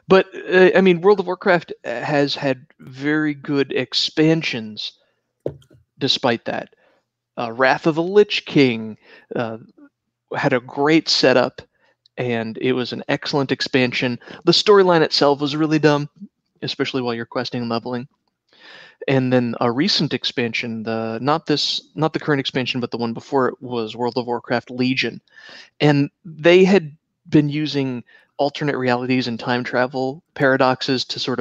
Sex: male